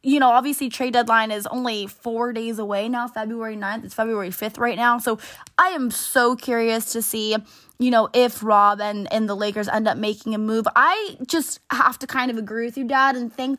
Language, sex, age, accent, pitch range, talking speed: English, female, 20-39, American, 220-260 Hz, 220 wpm